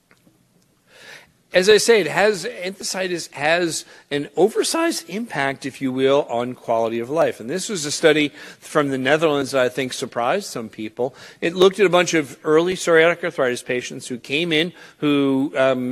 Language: English